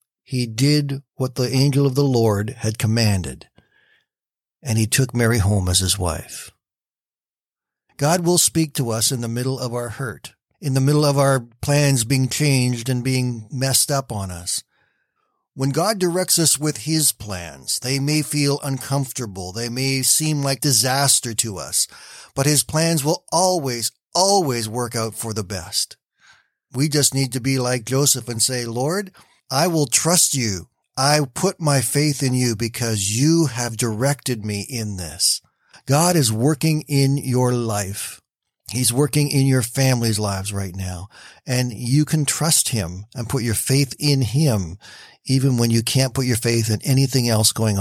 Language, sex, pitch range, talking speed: English, male, 110-140 Hz, 170 wpm